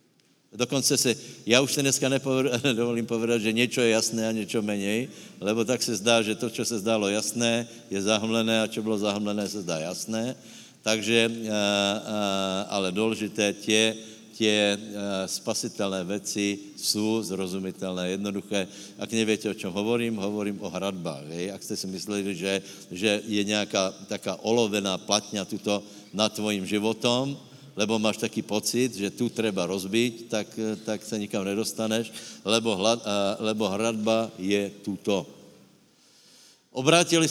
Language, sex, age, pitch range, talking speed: Slovak, male, 60-79, 100-115 Hz, 140 wpm